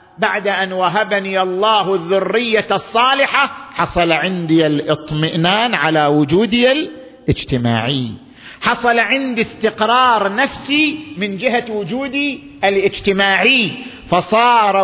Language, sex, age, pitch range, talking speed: Arabic, male, 50-69, 165-225 Hz, 85 wpm